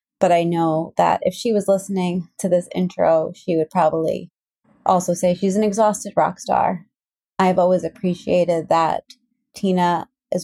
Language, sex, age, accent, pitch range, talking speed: English, female, 30-49, American, 170-205 Hz, 155 wpm